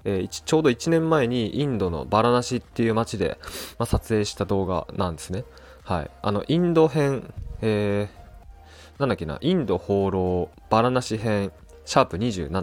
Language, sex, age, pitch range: Japanese, male, 20-39, 90-125 Hz